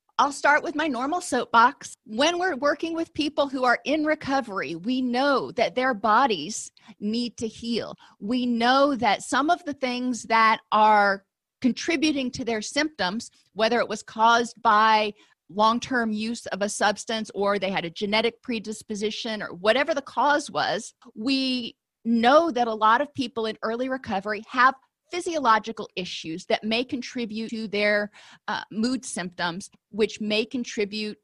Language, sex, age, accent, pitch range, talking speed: English, female, 40-59, American, 210-260 Hz, 155 wpm